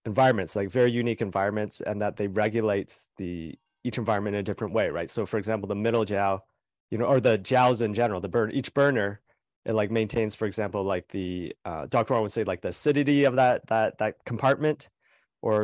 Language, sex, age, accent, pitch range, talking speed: English, male, 30-49, American, 100-120 Hz, 210 wpm